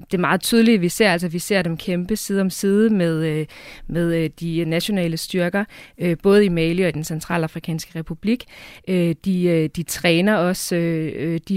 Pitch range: 160-190 Hz